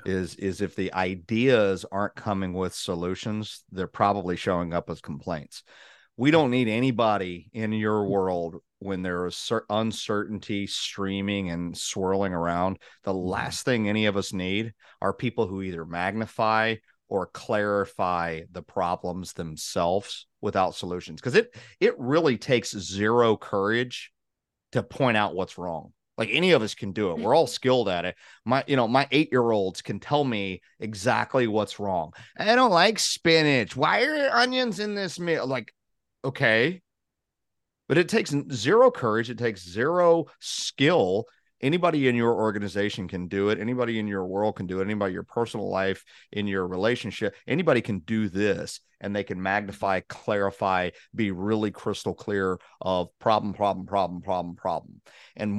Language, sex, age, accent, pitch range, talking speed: English, male, 40-59, American, 95-115 Hz, 160 wpm